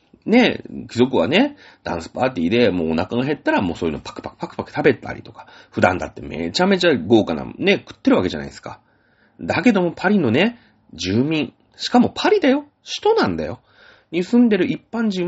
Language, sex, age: Japanese, male, 30-49